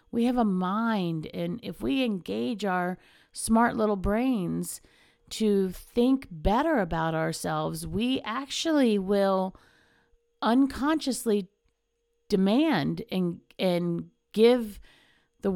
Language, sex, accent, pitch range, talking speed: English, female, American, 185-255 Hz, 100 wpm